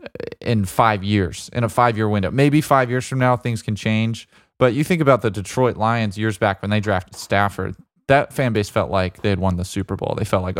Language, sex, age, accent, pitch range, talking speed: English, male, 20-39, American, 100-125 Hz, 240 wpm